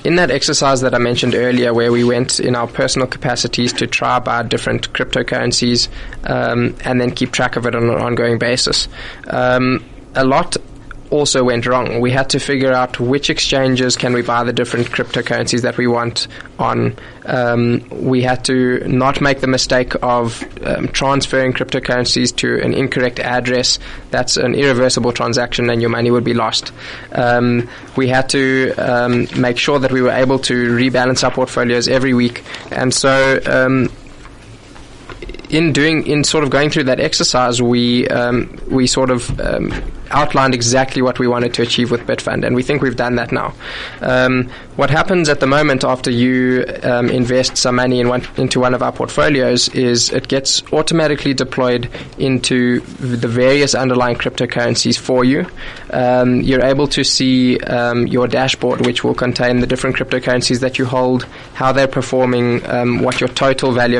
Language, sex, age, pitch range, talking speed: English, male, 20-39, 120-130 Hz, 175 wpm